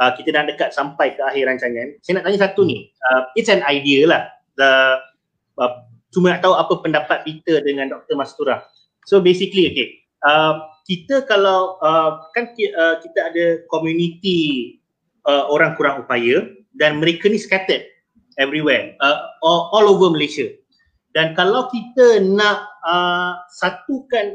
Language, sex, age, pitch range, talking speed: Malay, male, 30-49, 170-220 Hz, 145 wpm